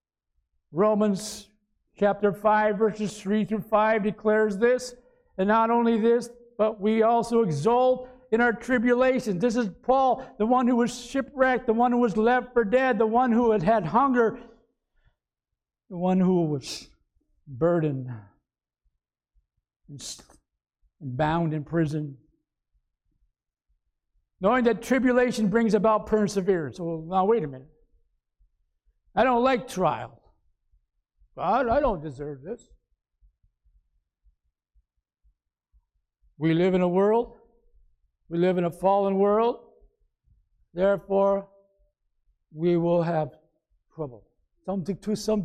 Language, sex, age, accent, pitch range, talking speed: English, male, 60-79, American, 155-240 Hz, 115 wpm